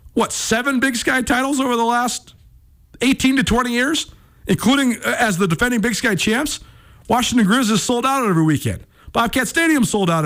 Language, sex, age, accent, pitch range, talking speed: English, male, 40-59, American, 155-230 Hz, 180 wpm